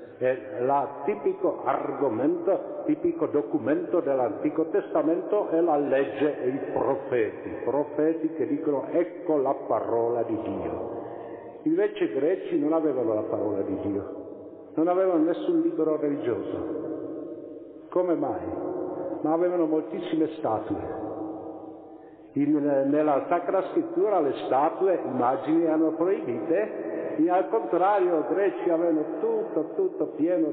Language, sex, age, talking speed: Italian, male, 50-69, 115 wpm